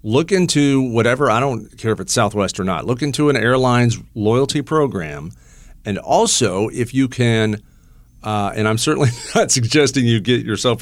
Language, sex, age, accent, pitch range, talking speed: English, male, 50-69, American, 110-140 Hz, 170 wpm